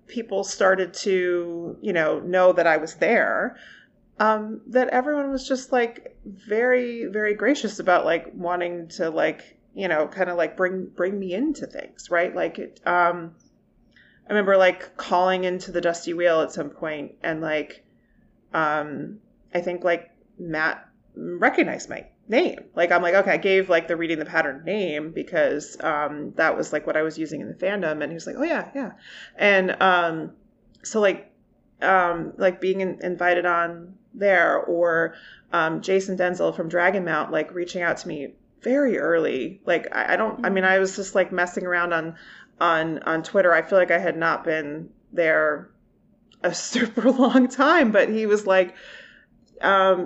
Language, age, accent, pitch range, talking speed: English, 30-49, American, 170-210 Hz, 175 wpm